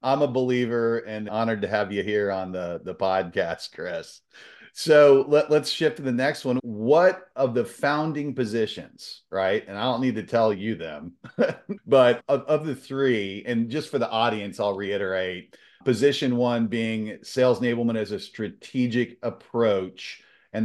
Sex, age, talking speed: male, 40-59, 165 wpm